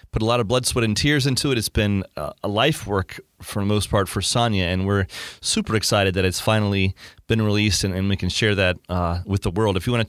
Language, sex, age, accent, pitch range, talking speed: English, male, 30-49, American, 95-115 Hz, 260 wpm